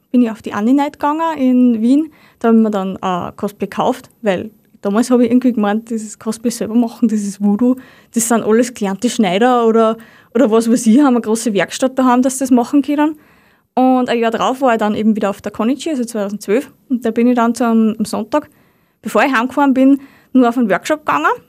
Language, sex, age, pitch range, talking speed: German, female, 20-39, 215-270 Hz, 230 wpm